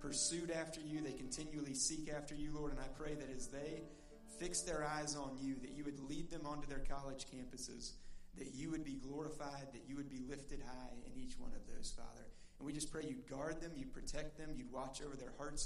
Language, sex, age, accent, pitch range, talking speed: English, male, 30-49, American, 135-150 Hz, 235 wpm